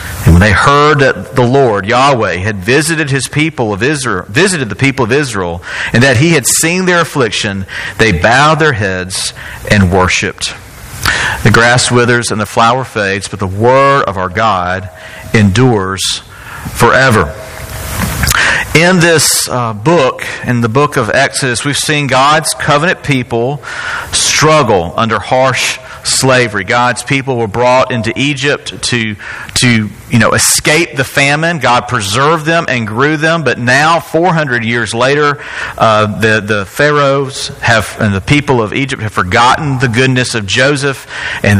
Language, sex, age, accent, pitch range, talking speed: English, male, 40-59, American, 110-140 Hz, 155 wpm